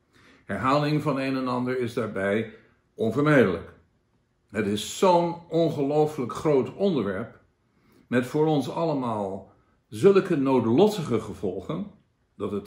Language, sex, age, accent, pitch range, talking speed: Dutch, male, 60-79, Dutch, 110-145 Hz, 110 wpm